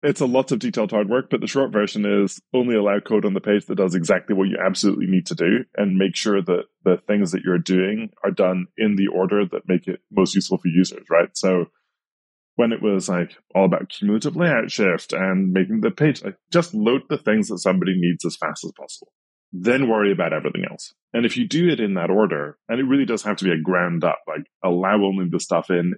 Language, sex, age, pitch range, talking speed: English, male, 20-39, 90-125 Hz, 240 wpm